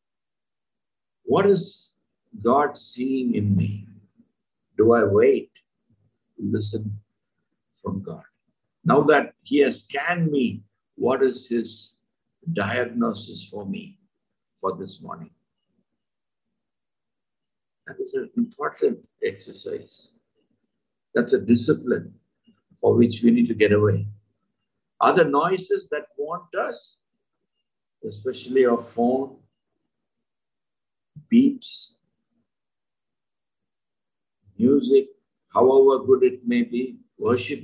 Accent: Indian